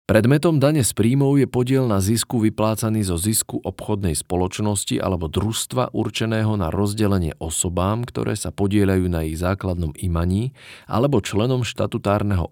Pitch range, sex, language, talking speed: 90-115 Hz, male, Slovak, 140 wpm